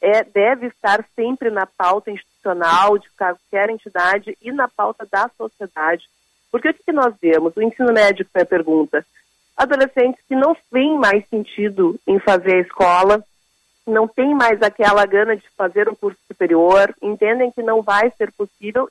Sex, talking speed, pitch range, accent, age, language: female, 165 wpm, 195-235 Hz, Brazilian, 40-59, Portuguese